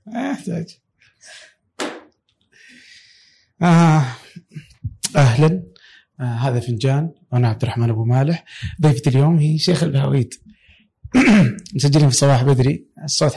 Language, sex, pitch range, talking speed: Arabic, male, 125-155 Hz, 85 wpm